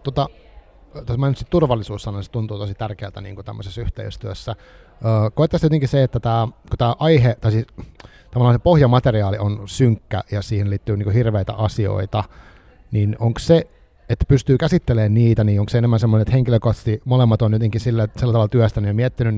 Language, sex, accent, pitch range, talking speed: Finnish, male, native, 105-125 Hz, 170 wpm